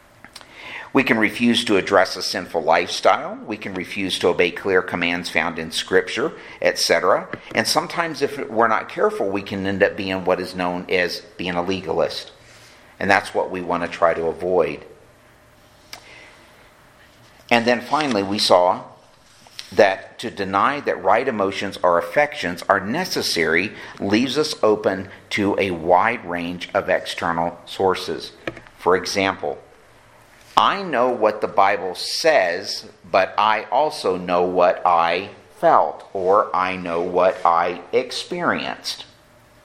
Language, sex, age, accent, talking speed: English, male, 50-69, American, 140 wpm